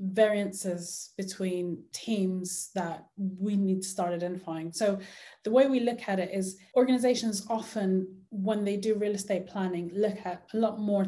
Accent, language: British, English